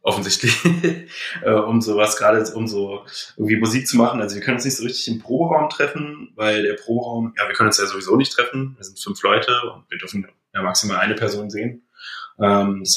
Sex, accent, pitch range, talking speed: male, German, 105-120 Hz, 210 wpm